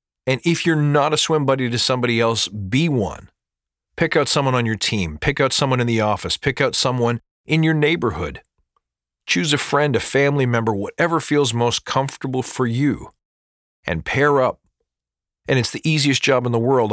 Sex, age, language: male, 40-59, English